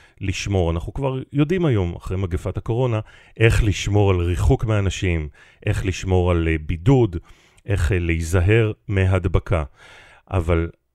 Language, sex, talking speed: Hebrew, male, 115 wpm